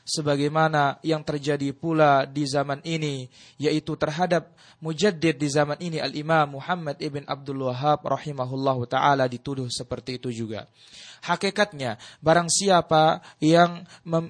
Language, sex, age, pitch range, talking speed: Malay, male, 20-39, 140-185 Hz, 120 wpm